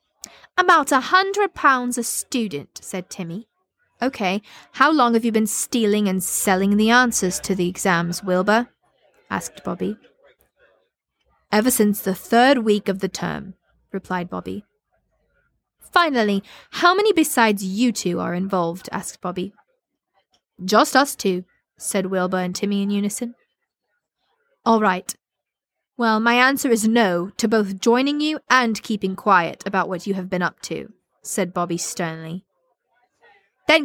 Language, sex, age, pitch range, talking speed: English, female, 20-39, 185-245 Hz, 140 wpm